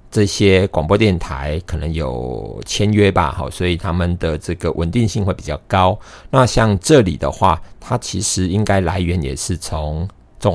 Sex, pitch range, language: male, 85-105 Hz, Chinese